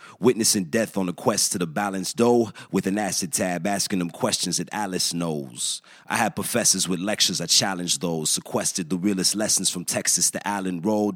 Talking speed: 195 wpm